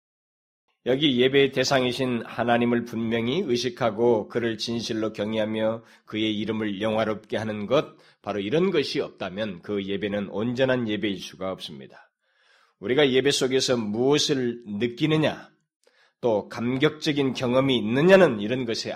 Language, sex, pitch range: Korean, male, 110-130 Hz